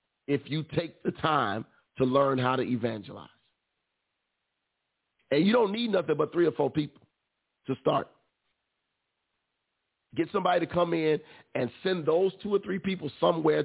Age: 40-59